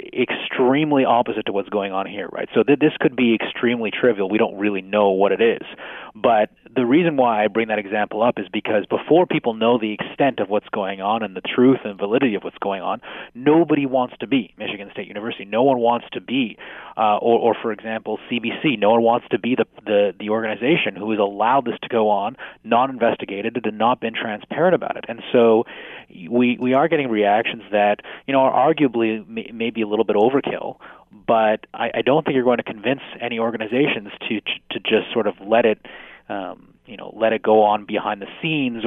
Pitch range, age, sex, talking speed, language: 105-125 Hz, 30-49, male, 215 wpm, English